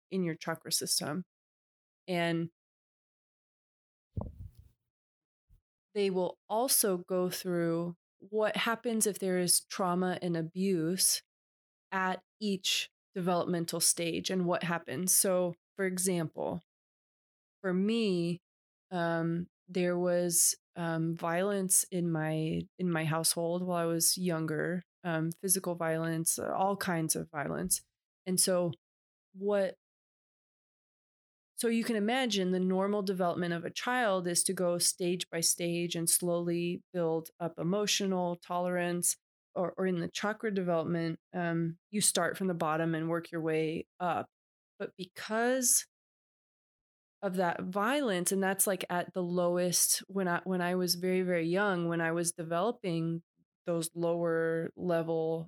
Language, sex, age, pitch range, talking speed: English, female, 20-39, 170-190 Hz, 130 wpm